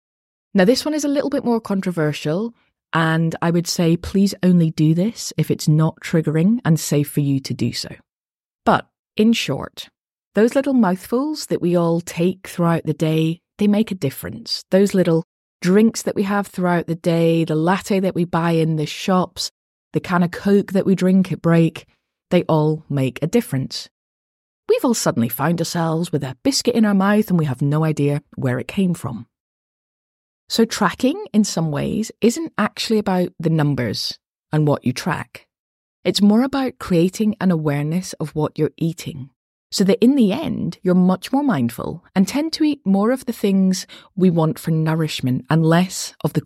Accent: British